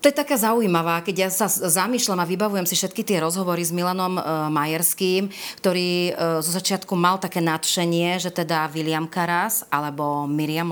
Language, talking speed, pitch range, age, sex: Slovak, 160 wpm, 165-190 Hz, 30-49, female